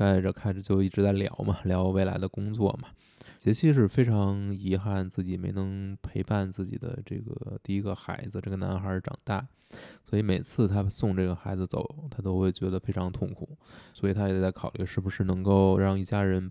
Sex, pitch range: male, 95-110 Hz